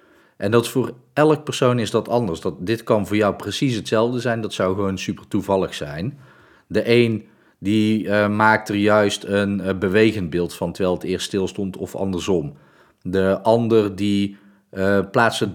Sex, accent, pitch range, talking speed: male, Dutch, 95-110 Hz, 180 wpm